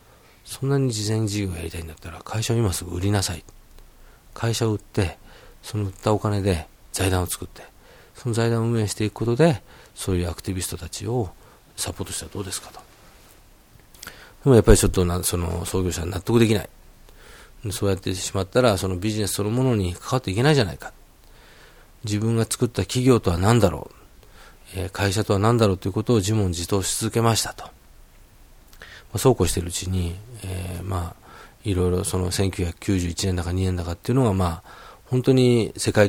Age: 40-59